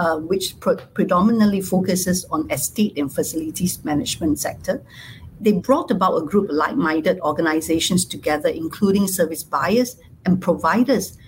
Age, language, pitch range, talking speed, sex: 60-79, English, 170-225 Hz, 130 wpm, female